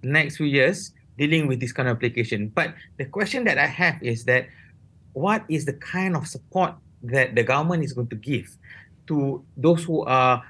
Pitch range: 140-180 Hz